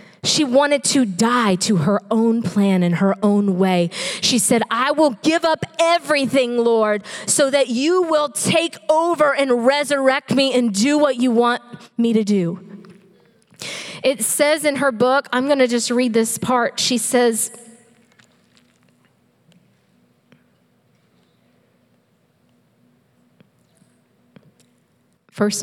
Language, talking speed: English, 120 wpm